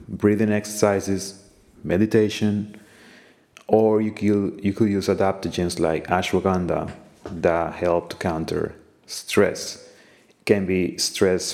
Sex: male